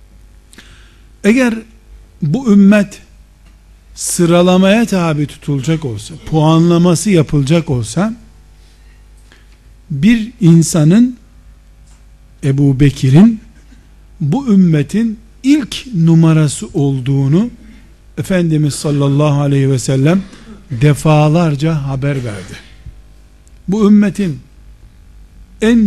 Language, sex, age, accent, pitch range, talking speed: Turkish, male, 50-69, native, 135-185 Hz, 70 wpm